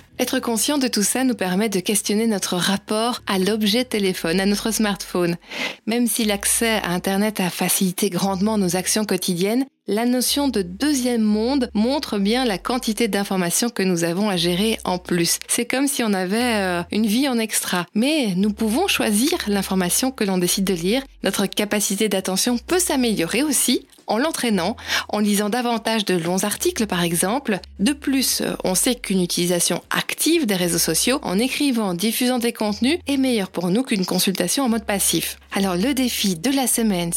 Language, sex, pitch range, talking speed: French, female, 195-250 Hz, 180 wpm